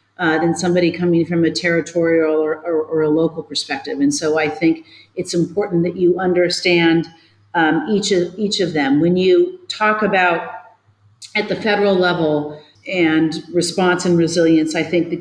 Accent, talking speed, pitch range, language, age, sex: American, 165 wpm, 160-180 Hz, English, 40-59, female